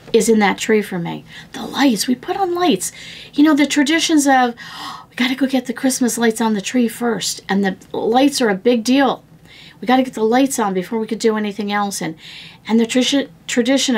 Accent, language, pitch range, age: American, English, 205-270 Hz, 40-59